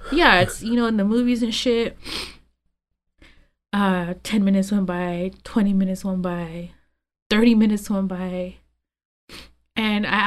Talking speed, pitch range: 140 wpm, 180-245 Hz